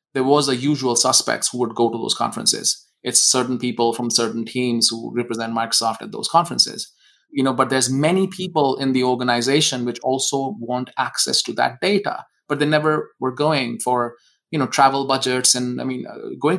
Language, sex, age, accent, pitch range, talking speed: English, male, 20-39, Indian, 120-135 Hz, 190 wpm